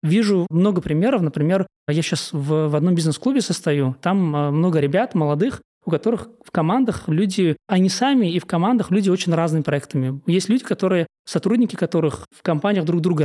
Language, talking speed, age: Russian, 170 wpm, 20-39